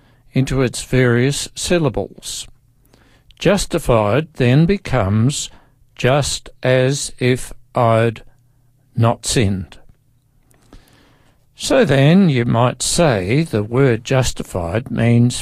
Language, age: English, 60-79